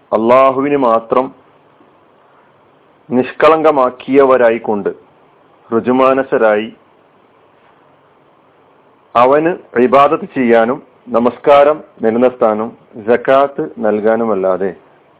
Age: 40-59